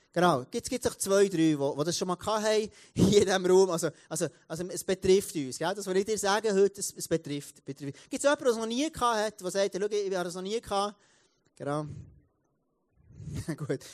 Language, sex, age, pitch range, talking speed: German, male, 30-49, 160-205 Hz, 230 wpm